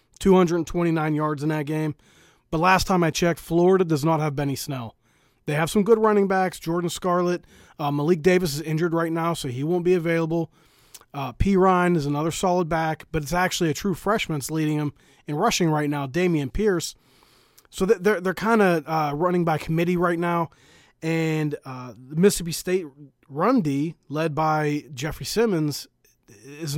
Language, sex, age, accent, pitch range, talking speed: English, male, 30-49, American, 145-170 Hz, 175 wpm